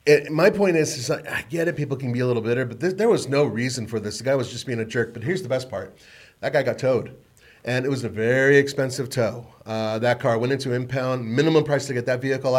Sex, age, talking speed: male, 30-49, 265 wpm